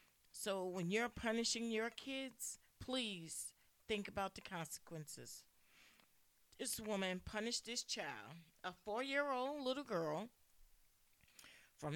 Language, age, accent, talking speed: English, 40-59, American, 105 wpm